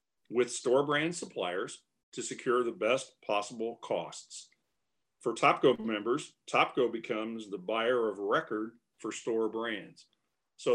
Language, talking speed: English, 130 wpm